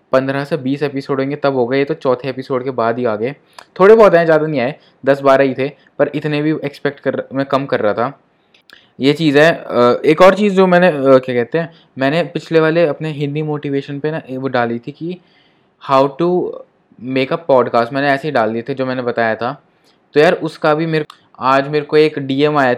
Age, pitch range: 20-39, 135-155 Hz